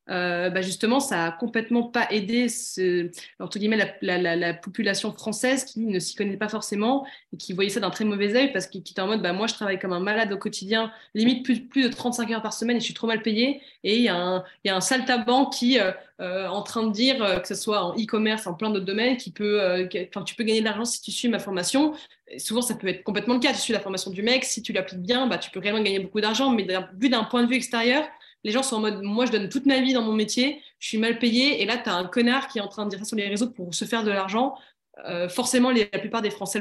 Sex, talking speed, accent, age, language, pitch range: female, 295 wpm, French, 20-39, French, 190-245 Hz